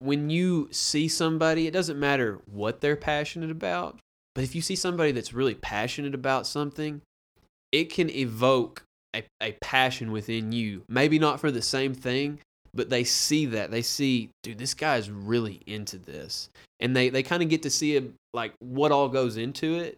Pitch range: 110-140 Hz